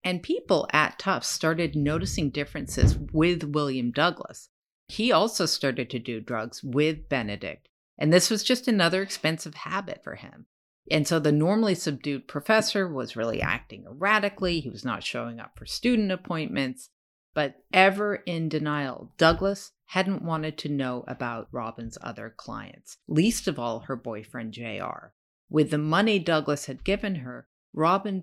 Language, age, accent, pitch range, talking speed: English, 50-69, American, 125-175 Hz, 155 wpm